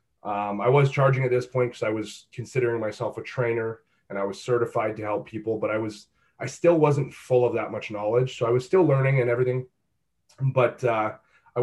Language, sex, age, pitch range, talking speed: English, male, 30-49, 115-130 Hz, 215 wpm